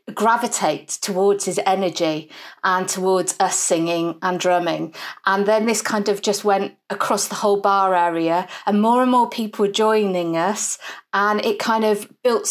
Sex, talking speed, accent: female, 170 wpm, British